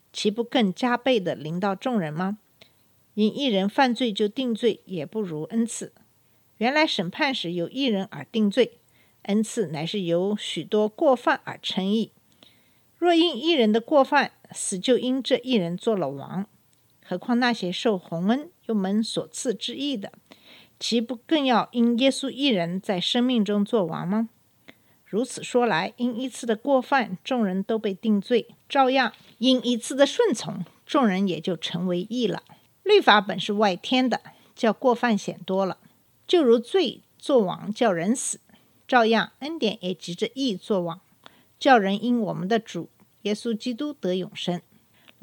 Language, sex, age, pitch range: Chinese, female, 50-69, 190-255 Hz